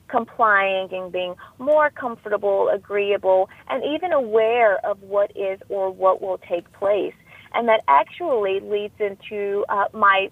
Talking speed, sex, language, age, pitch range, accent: 140 wpm, female, English, 40-59, 195-255 Hz, American